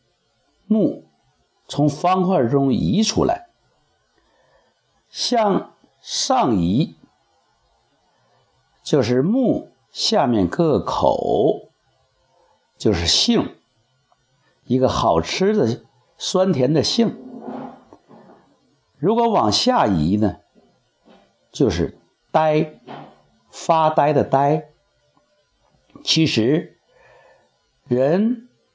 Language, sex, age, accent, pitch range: Chinese, male, 60-79, native, 145-215 Hz